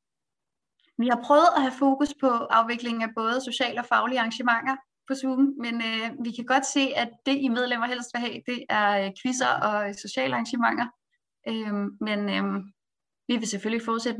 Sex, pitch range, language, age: female, 215-260 Hz, Danish, 20-39